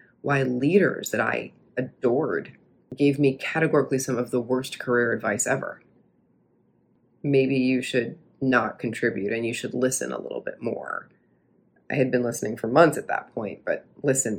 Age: 30-49